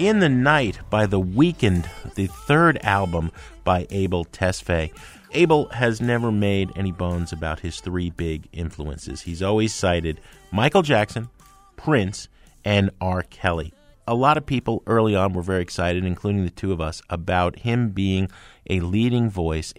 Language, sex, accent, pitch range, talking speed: English, male, American, 90-125 Hz, 160 wpm